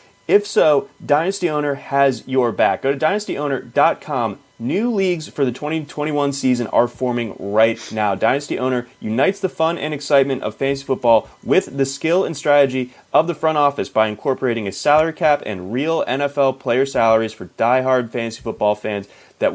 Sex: male